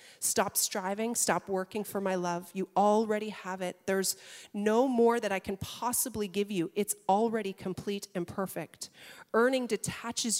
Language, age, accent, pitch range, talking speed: English, 40-59, American, 180-225 Hz, 155 wpm